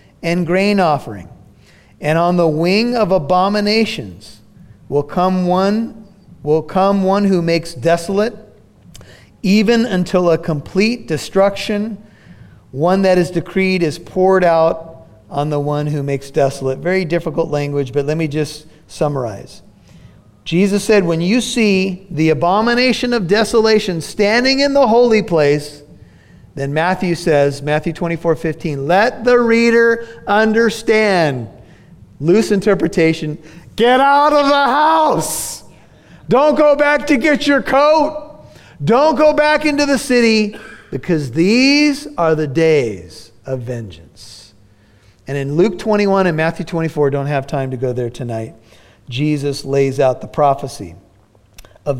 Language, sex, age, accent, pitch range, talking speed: English, male, 40-59, American, 140-210 Hz, 135 wpm